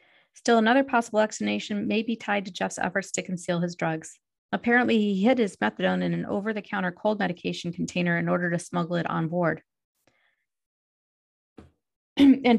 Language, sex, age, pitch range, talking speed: English, female, 30-49, 180-225 Hz, 155 wpm